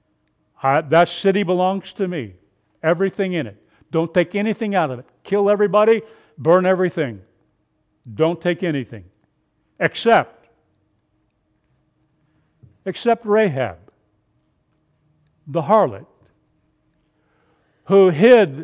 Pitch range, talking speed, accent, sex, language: 120-175 Hz, 95 wpm, American, male, English